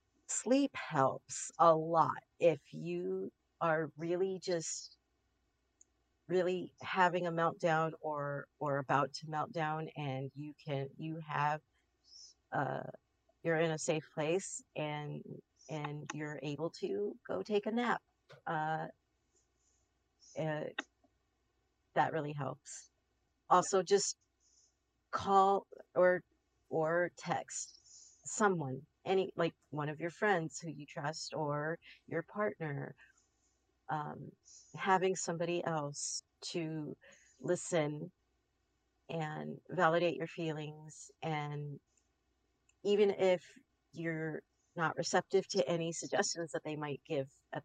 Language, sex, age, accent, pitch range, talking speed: English, female, 40-59, American, 145-175 Hz, 110 wpm